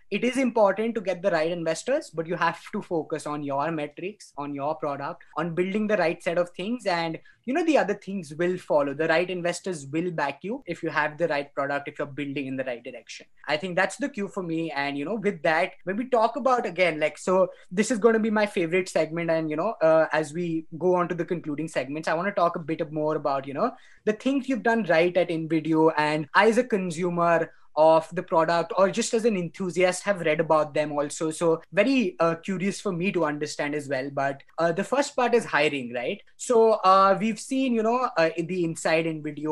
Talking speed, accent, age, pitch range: 235 wpm, Indian, 20-39, 160-210 Hz